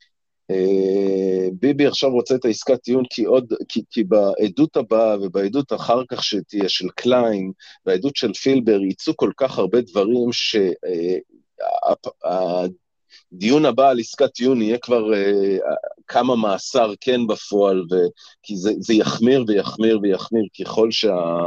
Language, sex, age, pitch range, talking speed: Hebrew, male, 40-59, 100-135 Hz, 105 wpm